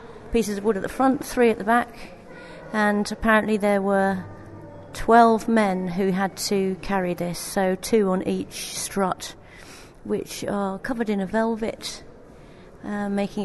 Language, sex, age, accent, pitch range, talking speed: English, female, 40-59, British, 185-220 Hz, 150 wpm